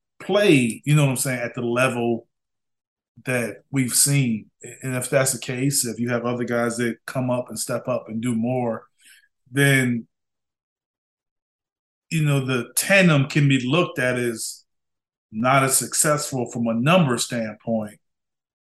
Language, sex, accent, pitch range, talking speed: English, male, American, 120-140 Hz, 155 wpm